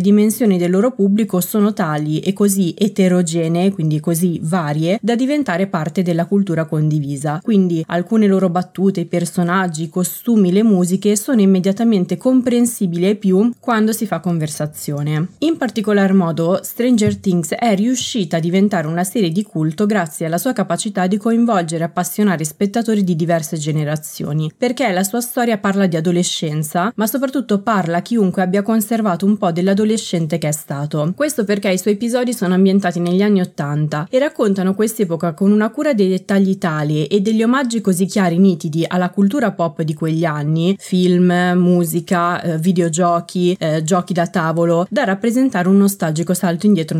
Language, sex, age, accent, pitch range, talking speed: Italian, female, 20-39, native, 170-215 Hz, 160 wpm